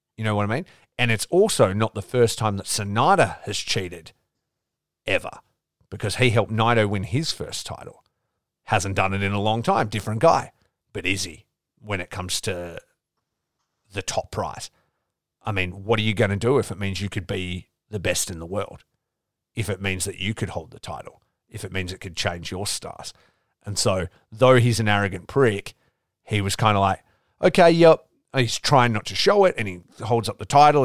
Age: 40-59